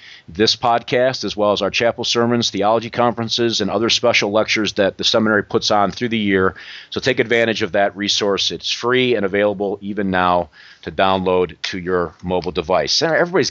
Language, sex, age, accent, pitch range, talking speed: English, male, 40-59, American, 90-115 Hz, 180 wpm